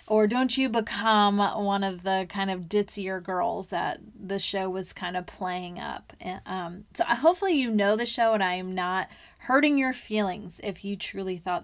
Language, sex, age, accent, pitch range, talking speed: English, female, 20-39, American, 190-240 Hz, 190 wpm